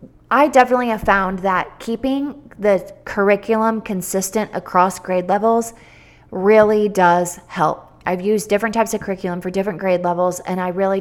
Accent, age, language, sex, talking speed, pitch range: American, 30-49, English, female, 155 wpm, 180-225 Hz